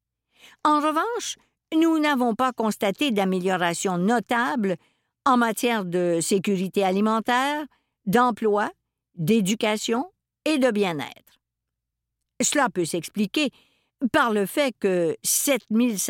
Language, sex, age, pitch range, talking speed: French, female, 50-69, 185-275 Hz, 95 wpm